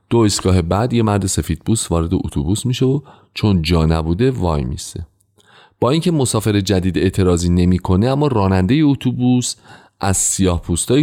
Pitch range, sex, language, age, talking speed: 90-125 Hz, male, Persian, 30-49, 145 wpm